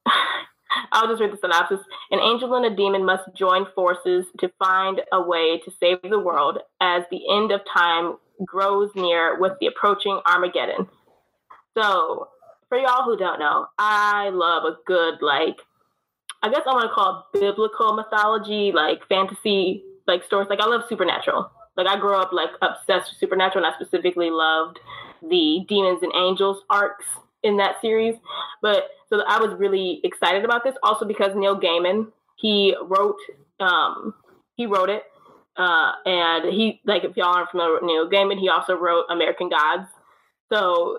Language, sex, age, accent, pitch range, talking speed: English, female, 20-39, American, 180-215 Hz, 170 wpm